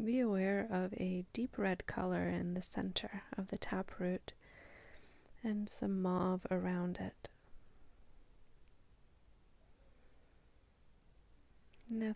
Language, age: English, 20-39